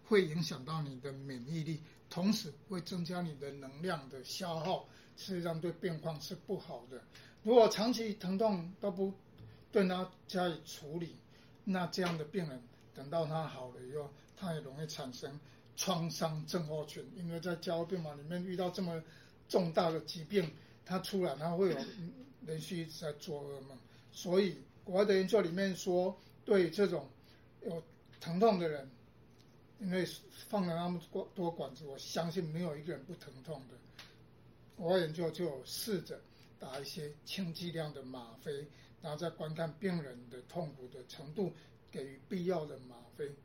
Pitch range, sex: 145-185 Hz, male